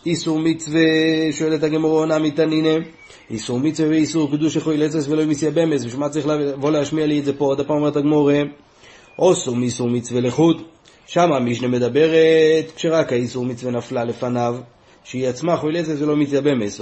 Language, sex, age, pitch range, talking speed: Hebrew, male, 30-49, 145-165 Hz, 155 wpm